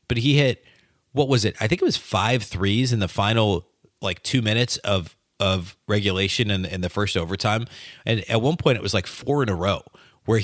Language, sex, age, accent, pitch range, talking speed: English, male, 30-49, American, 95-120 Hz, 220 wpm